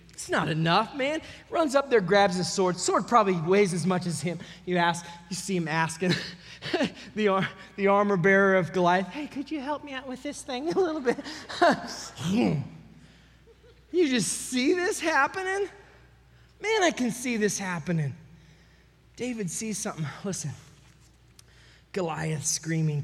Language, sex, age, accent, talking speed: English, male, 20-39, American, 150 wpm